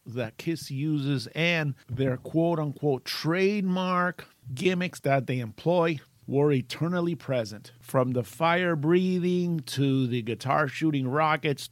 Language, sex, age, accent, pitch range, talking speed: English, male, 50-69, American, 140-185 Hz, 120 wpm